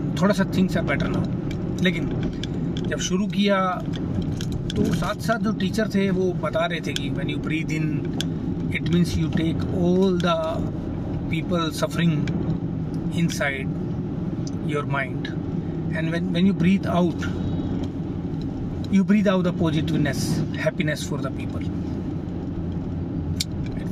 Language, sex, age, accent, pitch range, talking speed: Hindi, male, 30-49, native, 150-180 Hz, 125 wpm